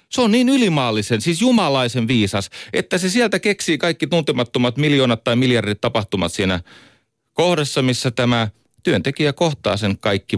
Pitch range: 100-145 Hz